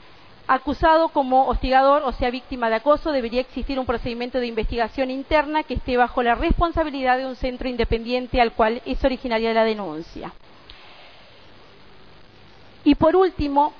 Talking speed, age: 145 wpm, 40-59